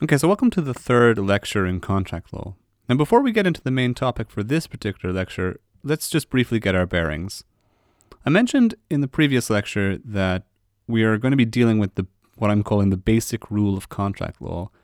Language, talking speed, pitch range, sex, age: English, 210 wpm, 95-115 Hz, male, 30-49